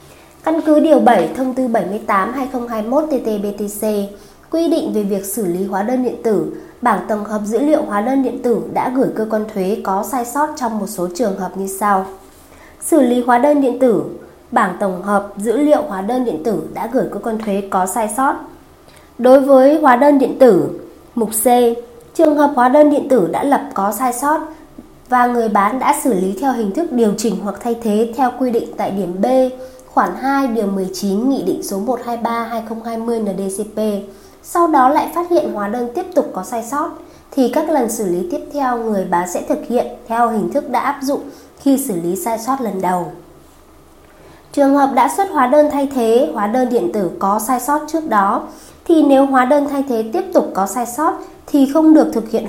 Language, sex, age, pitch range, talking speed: Vietnamese, female, 20-39, 205-280 Hz, 210 wpm